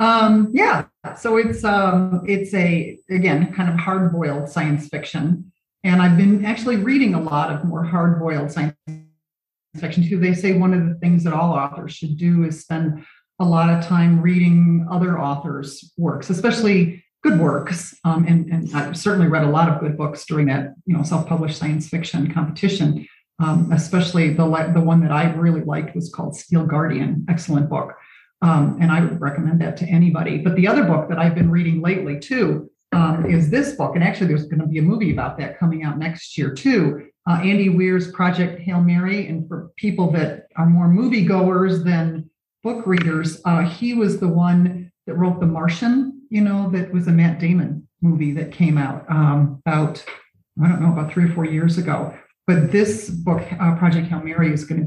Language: English